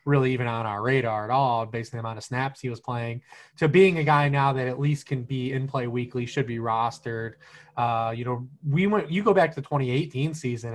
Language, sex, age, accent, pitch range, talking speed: English, male, 20-39, American, 125-145 Hz, 250 wpm